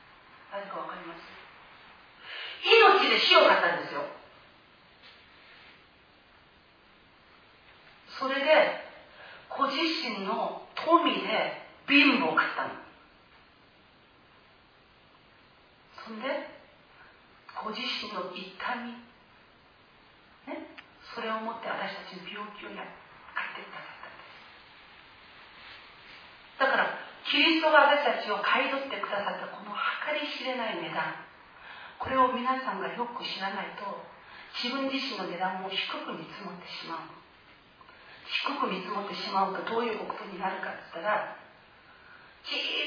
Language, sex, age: Japanese, female, 40-59